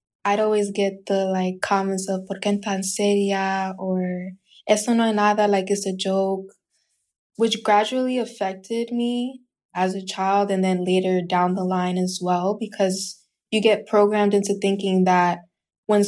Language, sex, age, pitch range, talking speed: English, female, 20-39, 185-205 Hz, 155 wpm